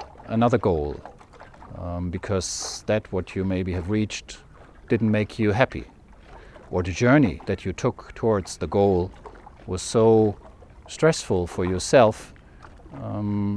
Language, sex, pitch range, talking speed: English, male, 95-120 Hz, 130 wpm